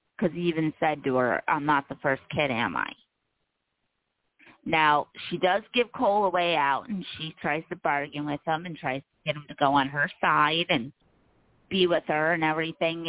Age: 30-49